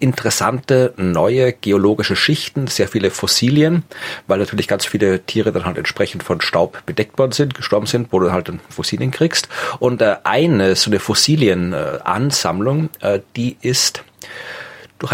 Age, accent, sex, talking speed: 40-59, German, male, 145 wpm